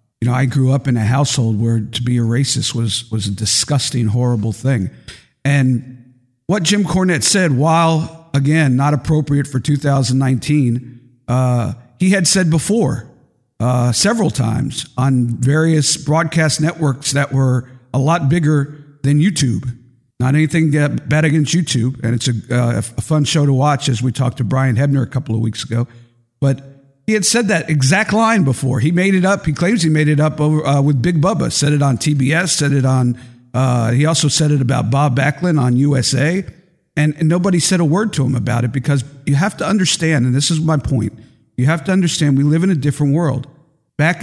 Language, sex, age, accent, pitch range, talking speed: English, male, 50-69, American, 125-160 Hz, 195 wpm